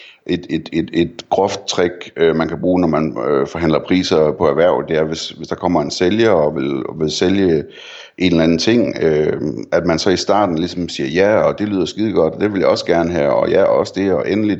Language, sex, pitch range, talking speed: Danish, male, 80-90 Hz, 240 wpm